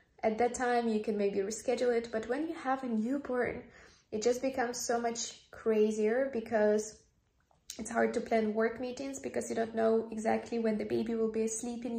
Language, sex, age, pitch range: English, female, 20-39, 220-235 Hz